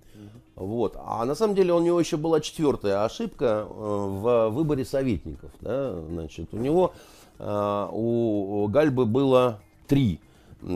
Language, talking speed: Russian, 130 wpm